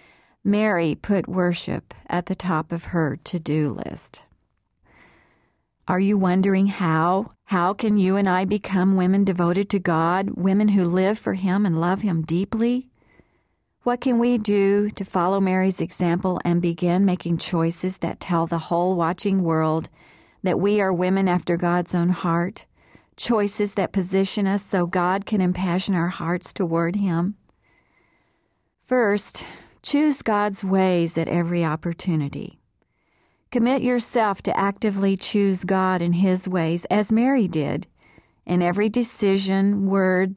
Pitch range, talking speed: 175-205 Hz, 140 wpm